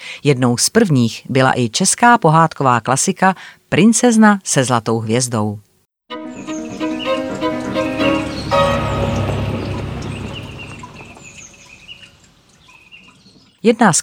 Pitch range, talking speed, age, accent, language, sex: 125-165 Hz, 60 wpm, 30-49, native, Czech, female